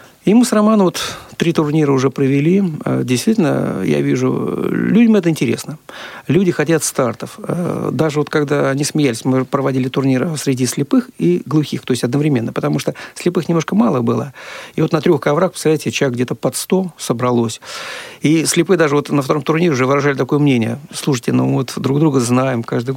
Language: Russian